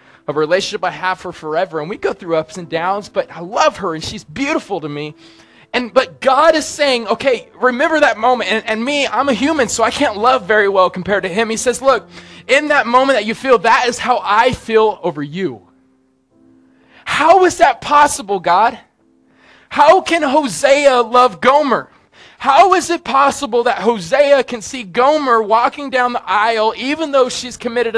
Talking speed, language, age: 195 wpm, English, 20-39